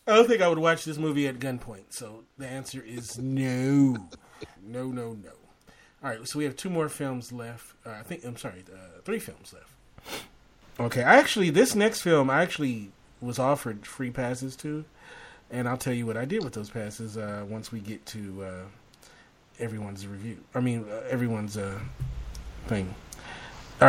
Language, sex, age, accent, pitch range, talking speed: English, male, 30-49, American, 110-140 Hz, 185 wpm